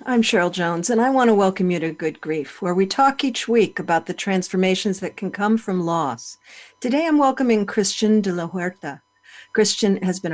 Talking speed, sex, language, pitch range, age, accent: 205 wpm, female, English, 180-225 Hz, 50-69, American